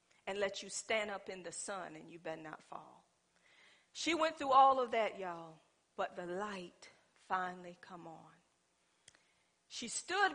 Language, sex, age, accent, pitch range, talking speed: English, female, 50-69, American, 175-245 Hz, 160 wpm